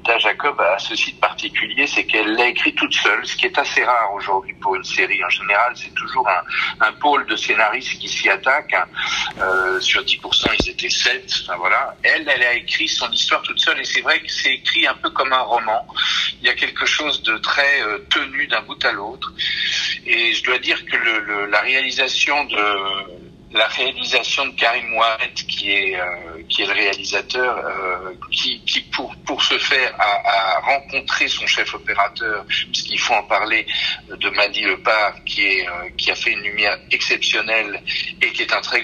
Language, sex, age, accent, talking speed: French, male, 50-69, French, 200 wpm